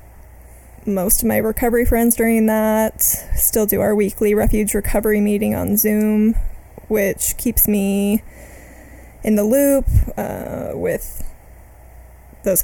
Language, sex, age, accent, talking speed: English, female, 20-39, American, 120 wpm